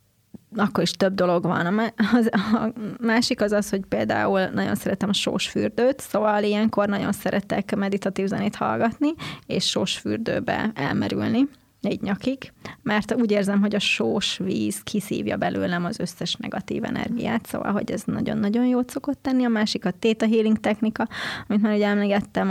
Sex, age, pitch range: female, 20-39, 185-220 Hz